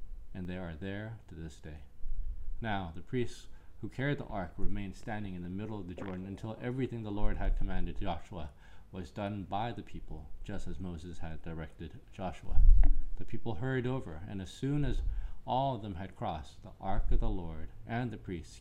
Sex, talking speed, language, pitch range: male, 195 wpm, English, 85-110 Hz